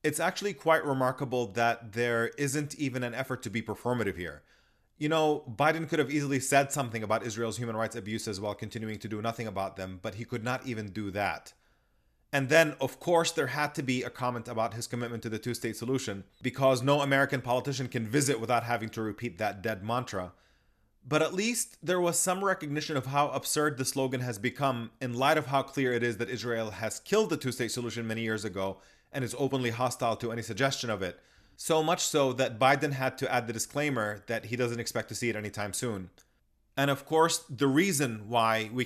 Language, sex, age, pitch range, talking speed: English, male, 30-49, 110-140 Hz, 210 wpm